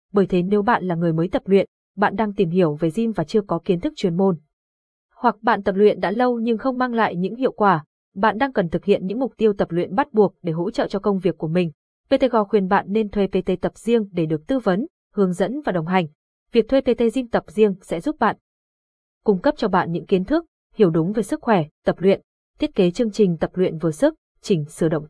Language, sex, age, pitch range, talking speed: Vietnamese, female, 20-39, 185-235 Hz, 255 wpm